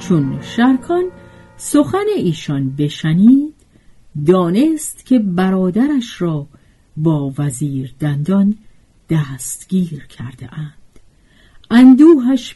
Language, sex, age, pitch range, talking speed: Persian, female, 50-69, 155-245 Hz, 70 wpm